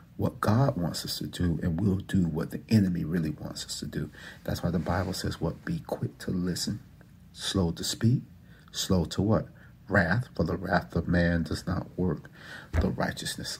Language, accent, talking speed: English, American, 195 wpm